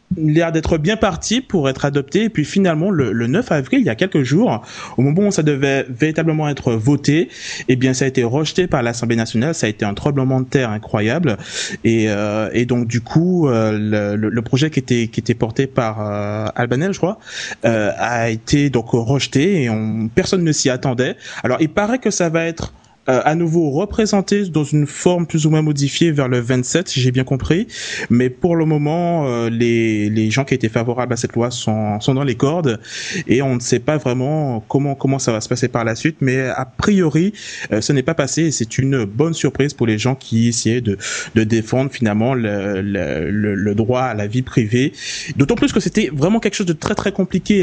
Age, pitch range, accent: 20-39, 115-160 Hz, French